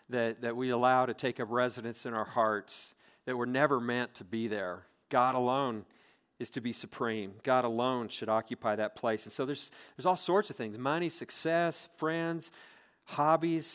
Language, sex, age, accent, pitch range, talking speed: English, male, 40-59, American, 120-150 Hz, 185 wpm